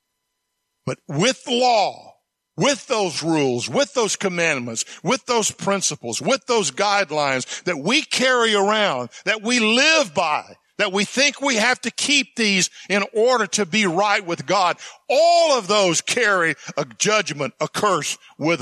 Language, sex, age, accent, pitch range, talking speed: English, male, 50-69, American, 165-245 Hz, 150 wpm